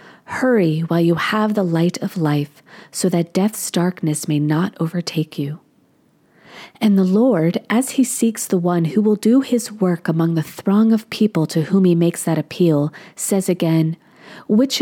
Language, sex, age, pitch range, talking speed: English, female, 40-59, 170-220 Hz, 175 wpm